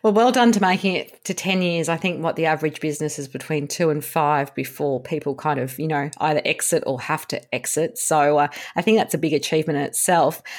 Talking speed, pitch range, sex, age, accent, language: 240 wpm, 155-190 Hz, female, 40-59, Australian, English